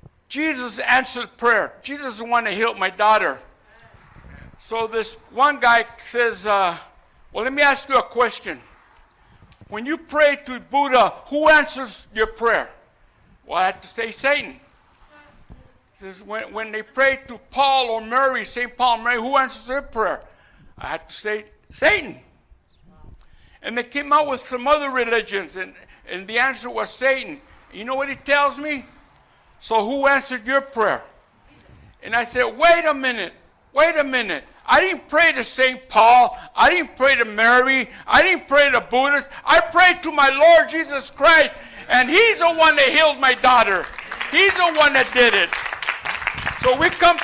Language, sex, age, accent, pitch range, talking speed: English, male, 60-79, American, 235-285 Hz, 170 wpm